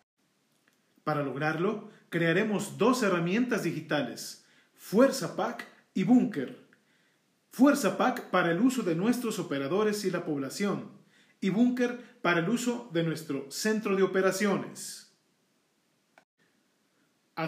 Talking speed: 110 wpm